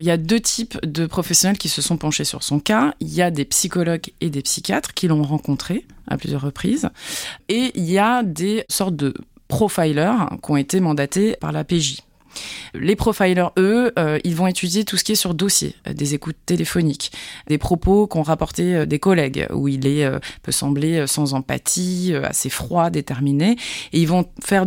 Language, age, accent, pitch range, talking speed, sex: French, 20-39, French, 150-185 Hz, 205 wpm, female